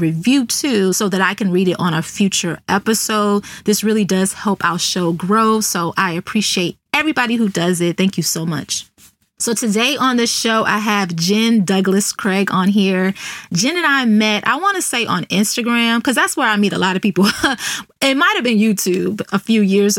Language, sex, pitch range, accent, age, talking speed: English, female, 185-225 Hz, American, 20-39, 205 wpm